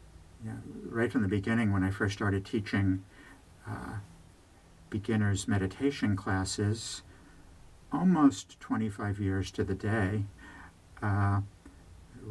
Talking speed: 95 wpm